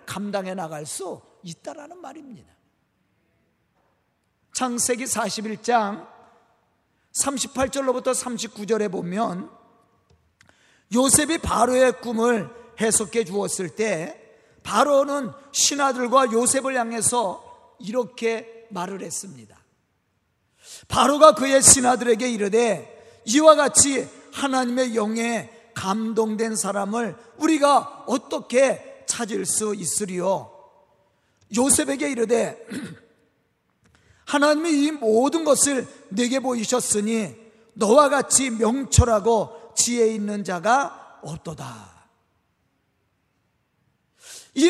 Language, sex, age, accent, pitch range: Korean, male, 40-59, native, 225-290 Hz